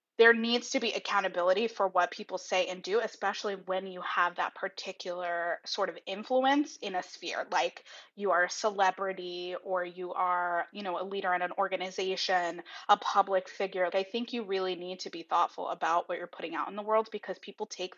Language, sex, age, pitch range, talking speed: English, female, 20-39, 180-225 Hz, 200 wpm